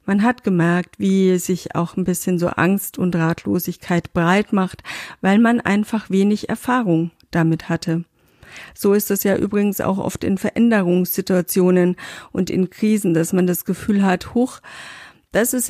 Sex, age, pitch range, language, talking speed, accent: female, 50-69, 175-205 Hz, German, 155 wpm, German